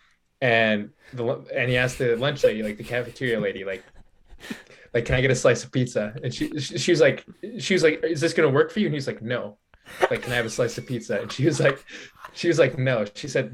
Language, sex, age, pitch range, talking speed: English, male, 20-39, 115-145 Hz, 255 wpm